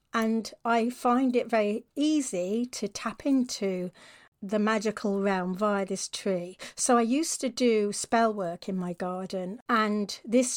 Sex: female